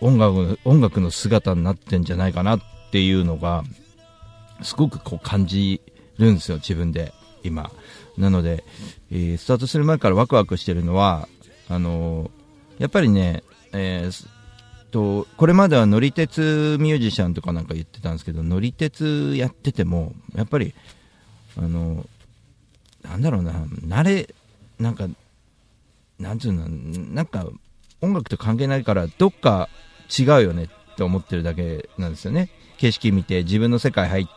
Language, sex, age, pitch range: Japanese, male, 50-69, 90-130 Hz